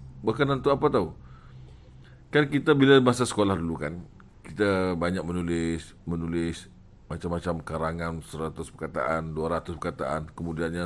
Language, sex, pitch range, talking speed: Malay, male, 95-150 Hz, 125 wpm